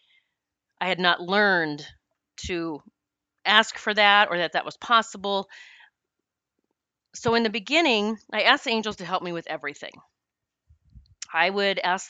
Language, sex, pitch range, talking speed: English, female, 175-230 Hz, 145 wpm